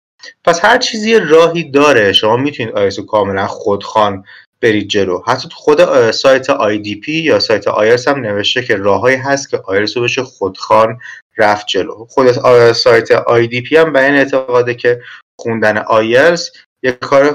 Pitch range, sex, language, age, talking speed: 120-175 Hz, male, Persian, 30-49, 160 wpm